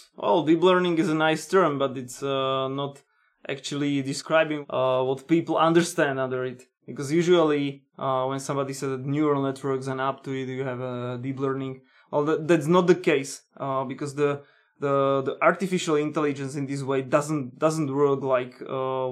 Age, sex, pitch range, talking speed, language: 20-39, male, 135-155 Hz, 190 wpm, English